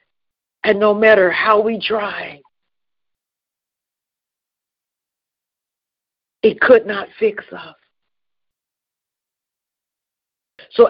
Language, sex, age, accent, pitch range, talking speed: English, female, 50-69, American, 205-235 Hz, 65 wpm